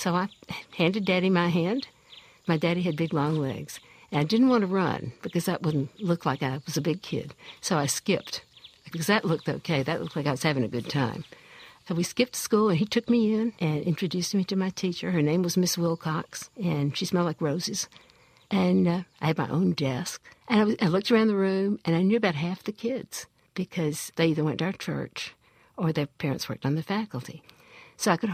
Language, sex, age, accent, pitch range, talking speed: English, female, 60-79, American, 155-210 Hz, 230 wpm